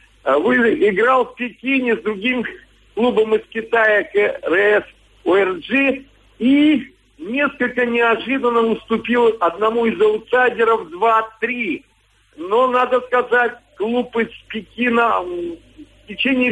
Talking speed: 95 wpm